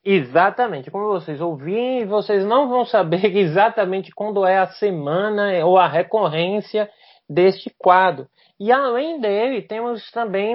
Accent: Brazilian